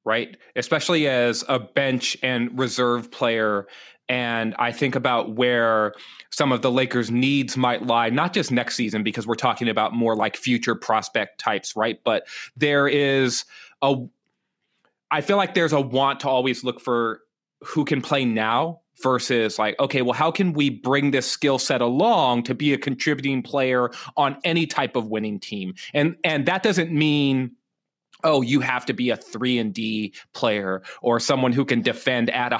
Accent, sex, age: American, male, 30-49